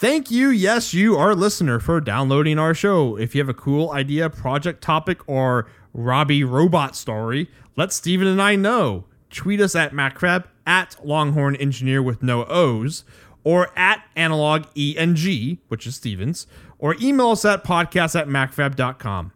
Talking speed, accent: 160 wpm, American